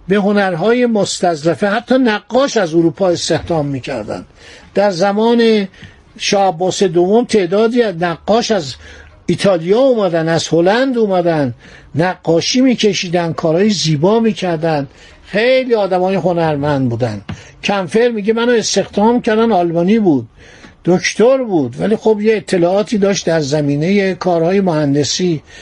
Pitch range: 165-210 Hz